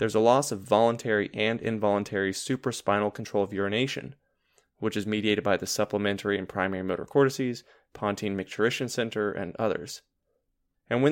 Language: English